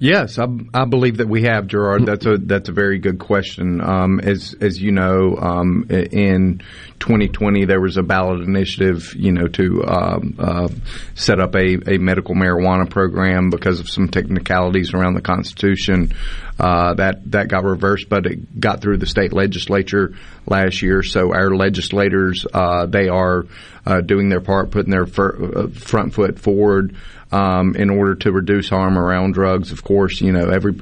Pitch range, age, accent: 90-100 Hz, 30-49, American